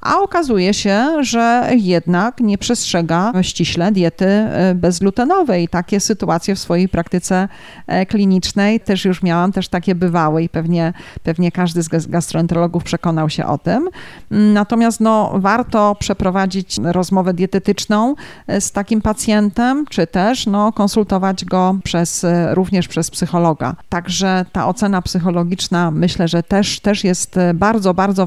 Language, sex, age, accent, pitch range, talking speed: Polish, female, 40-59, native, 175-210 Hz, 130 wpm